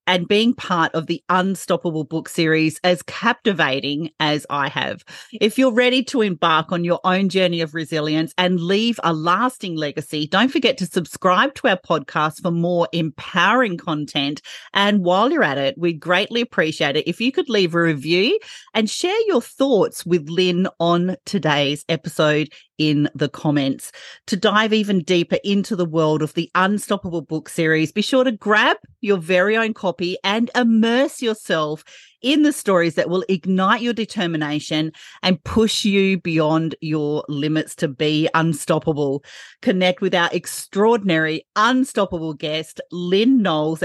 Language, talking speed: English, 155 wpm